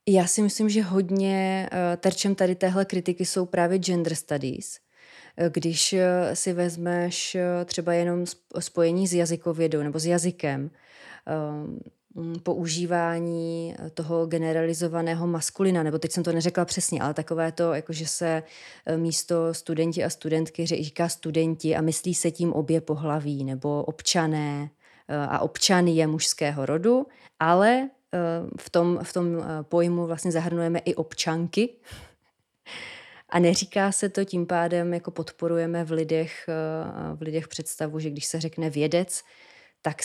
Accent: native